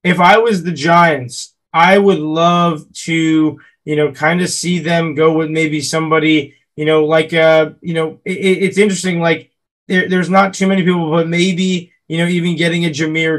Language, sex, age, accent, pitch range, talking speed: English, male, 20-39, American, 150-170 Hz, 195 wpm